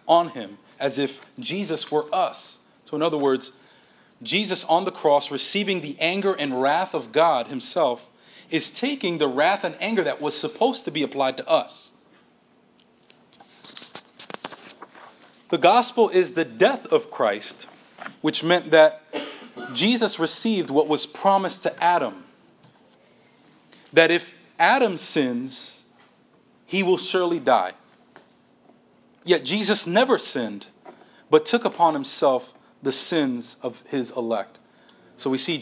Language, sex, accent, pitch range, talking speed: English, male, American, 145-200 Hz, 130 wpm